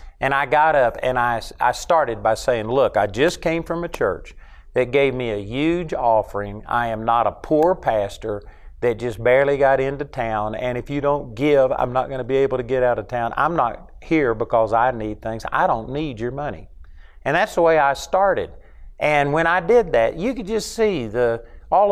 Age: 50-69